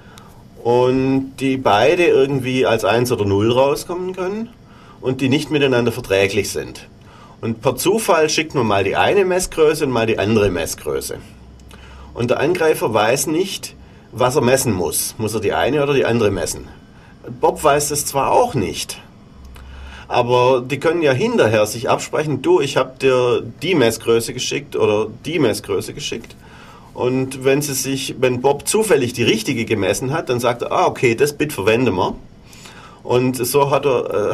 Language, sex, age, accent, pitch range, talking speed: German, male, 40-59, German, 115-160 Hz, 170 wpm